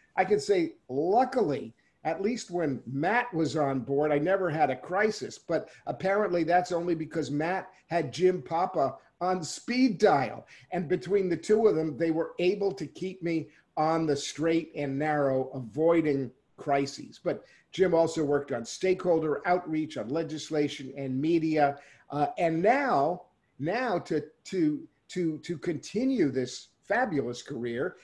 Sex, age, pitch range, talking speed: male, 50-69, 145-190 Hz, 150 wpm